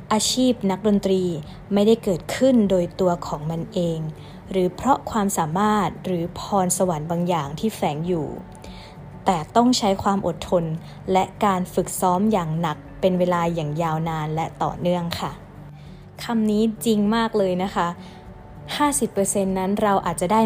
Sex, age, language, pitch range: female, 20-39, Thai, 175-210 Hz